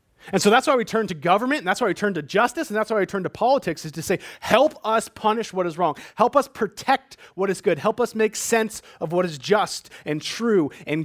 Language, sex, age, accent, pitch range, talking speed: English, male, 30-49, American, 120-195 Hz, 260 wpm